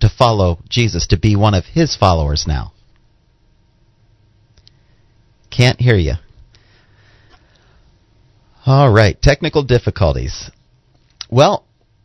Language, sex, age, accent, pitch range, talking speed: English, male, 40-59, American, 100-125 Hz, 90 wpm